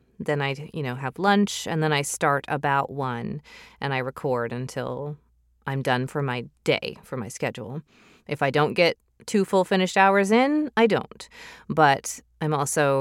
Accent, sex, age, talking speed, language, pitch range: American, female, 30-49, 175 wpm, English, 140-180 Hz